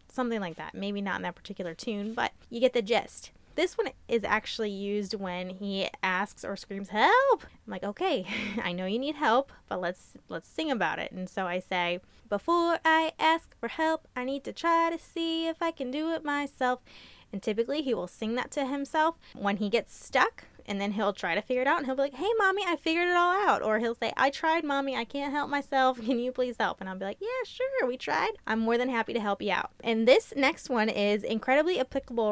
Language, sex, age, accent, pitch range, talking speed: English, female, 10-29, American, 210-305 Hz, 240 wpm